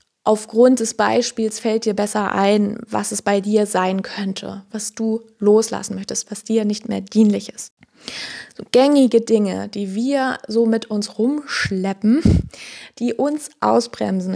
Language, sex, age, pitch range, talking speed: German, female, 20-39, 200-225 Hz, 145 wpm